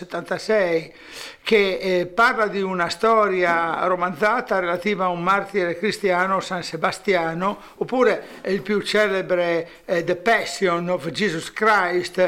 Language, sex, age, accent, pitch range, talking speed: Italian, male, 60-79, native, 170-205 Hz, 115 wpm